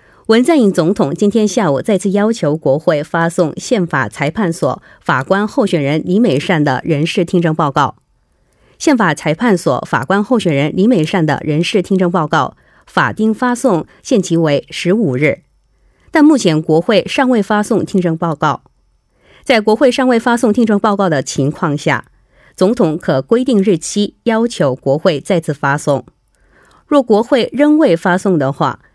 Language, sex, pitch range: Korean, female, 155-215 Hz